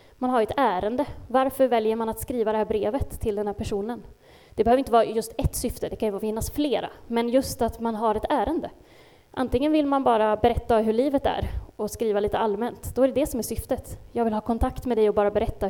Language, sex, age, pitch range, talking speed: Swedish, female, 20-39, 210-265 Hz, 240 wpm